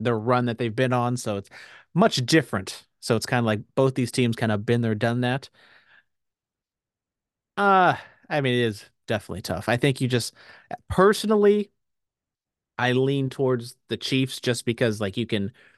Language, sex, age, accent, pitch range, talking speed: English, male, 30-49, American, 110-145 Hz, 175 wpm